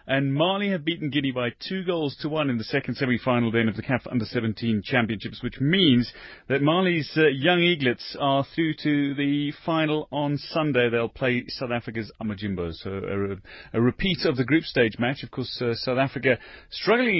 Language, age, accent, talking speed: English, 30-49, British, 190 wpm